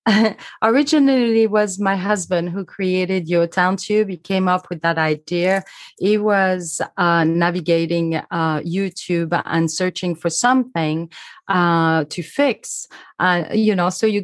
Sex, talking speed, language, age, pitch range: female, 145 wpm, English, 30-49, 165-200 Hz